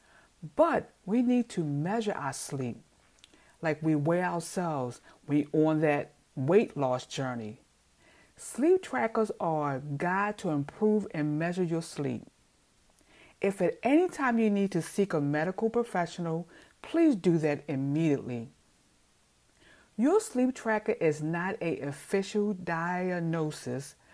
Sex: female